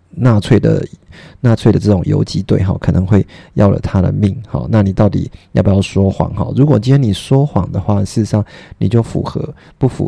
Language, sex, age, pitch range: Chinese, male, 30-49, 100-115 Hz